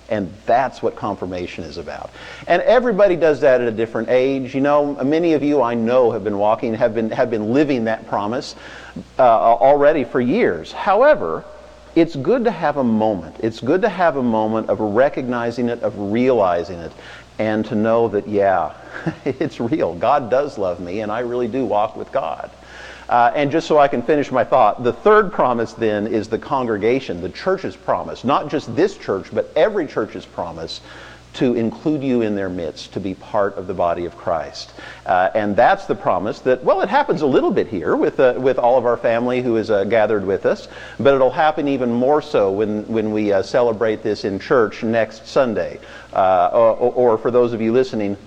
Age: 50-69